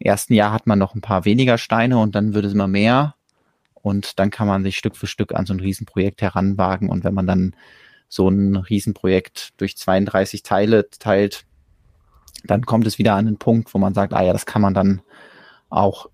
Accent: German